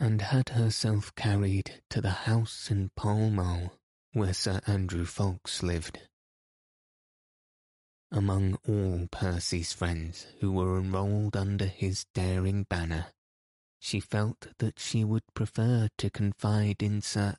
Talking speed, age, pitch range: 125 wpm, 20-39, 90-105 Hz